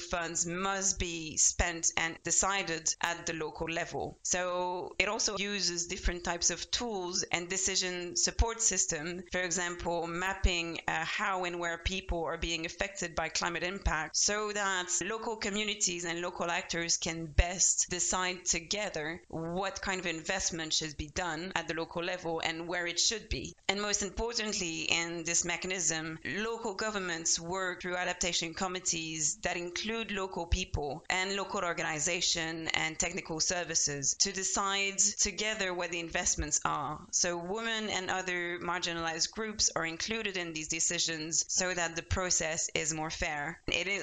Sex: female